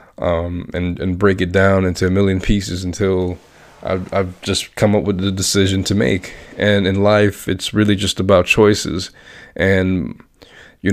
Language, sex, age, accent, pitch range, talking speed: English, male, 20-39, American, 95-105 Hz, 170 wpm